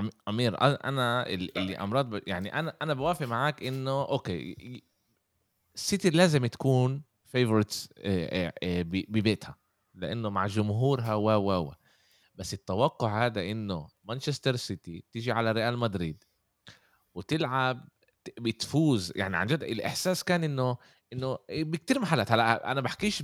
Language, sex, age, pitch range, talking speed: Arabic, male, 20-39, 100-140 Hz, 115 wpm